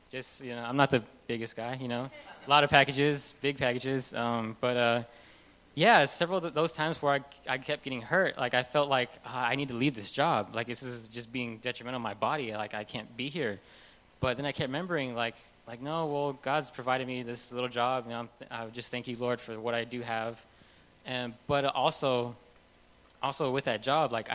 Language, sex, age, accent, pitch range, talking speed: English, male, 10-29, American, 115-140 Hz, 230 wpm